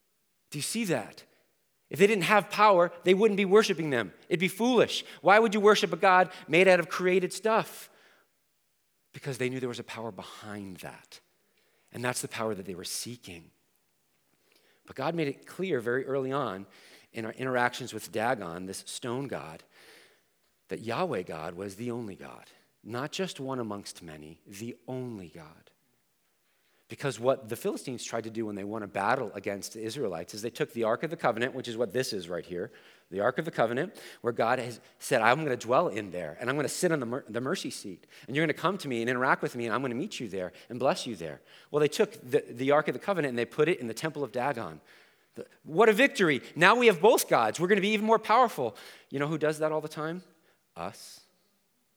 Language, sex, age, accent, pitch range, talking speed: English, male, 40-59, American, 115-175 Hz, 225 wpm